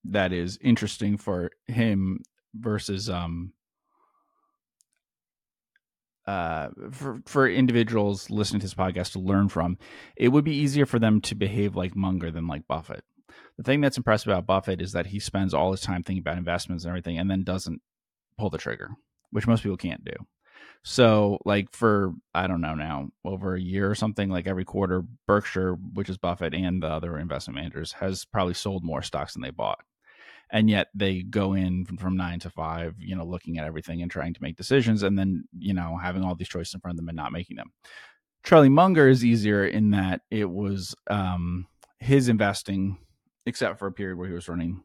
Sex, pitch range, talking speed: male, 90-105 Hz, 195 wpm